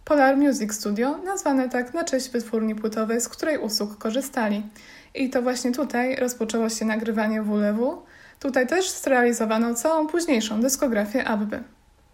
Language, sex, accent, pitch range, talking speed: Polish, female, native, 230-285 Hz, 140 wpm